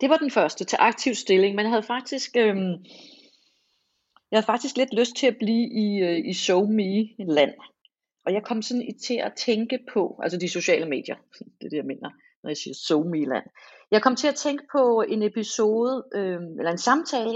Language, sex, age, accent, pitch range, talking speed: Danish, female, 30-49, native, 175-235 Hz, 210 wpm